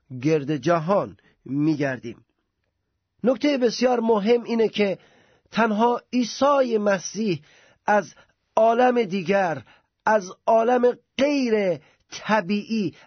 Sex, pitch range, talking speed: male, 180-240 Hz, 85 wpm